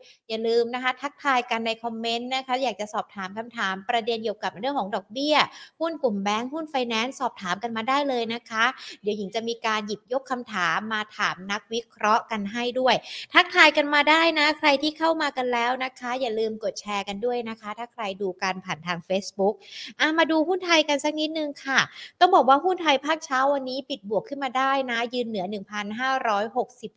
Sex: female